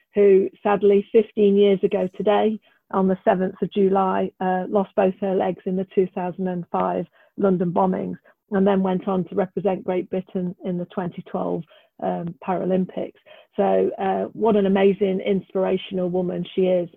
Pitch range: 185-205 Hz